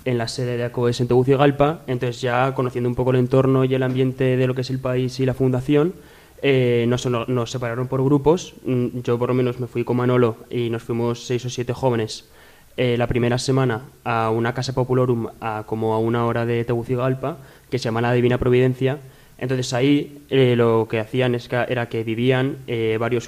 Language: Spanish